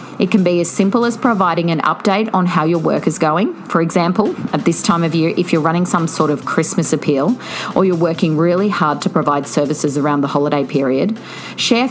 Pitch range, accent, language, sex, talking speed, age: 160-215 Hz, Australian, English, female, 215 wpm, 40-59